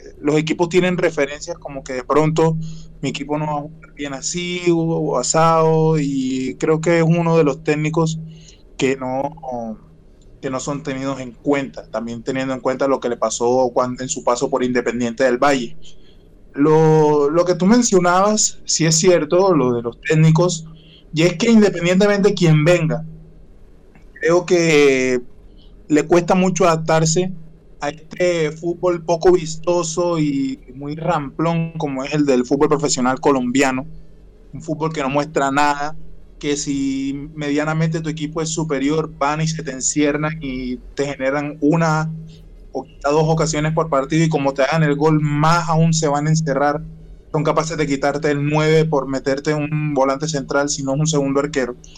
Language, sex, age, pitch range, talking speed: Spanish, male, 20-39, 135-160 Hz, 170 wpm